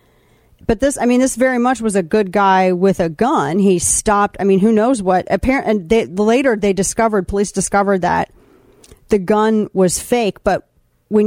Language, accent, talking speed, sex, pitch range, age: English, American, 190 wpm, female, 185-220 Hz, 40-59